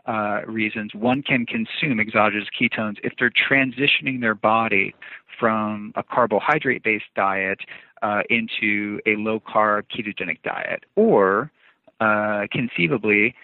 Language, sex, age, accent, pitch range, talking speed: English, male, 40-59, American, 105-120 Hz, 115 wpm